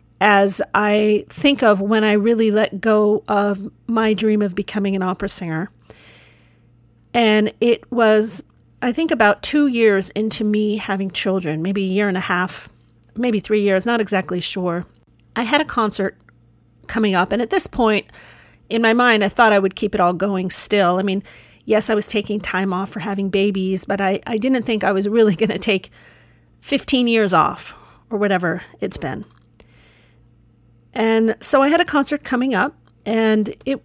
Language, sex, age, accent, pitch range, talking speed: English, female, 40-59, American, 195-230 Hz, 180 wpm